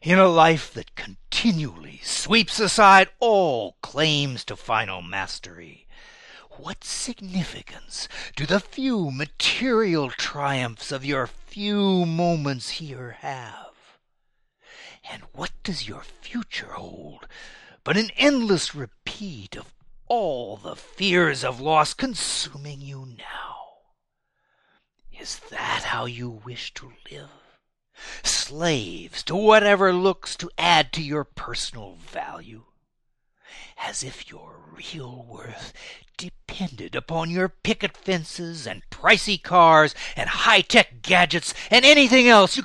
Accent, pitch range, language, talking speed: American, 140-200 Hz, English, 115 wpm